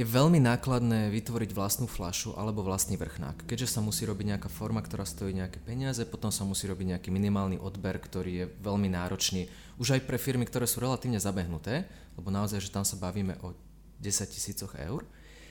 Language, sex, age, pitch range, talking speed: Slovak, male, 30-49, 90-115 Hz, 185 wpm